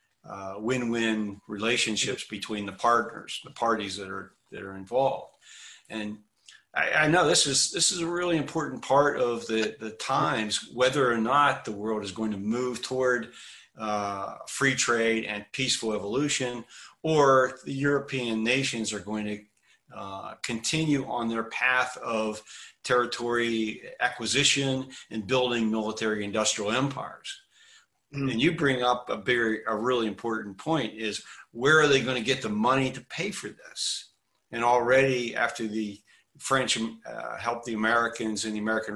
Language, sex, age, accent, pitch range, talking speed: English, male, 40-59, American, 110-130 Hz, 155 wpm